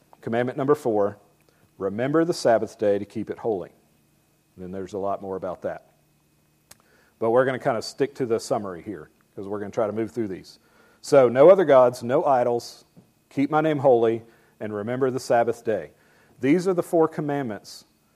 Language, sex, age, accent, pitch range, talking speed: English, male, 40-59, American, 110-145 Hz, 190 wpm